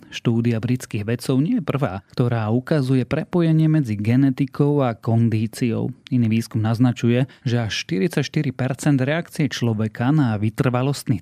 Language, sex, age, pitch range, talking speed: Slovak, male, 30-49, 115-140 Hz, 125 wpm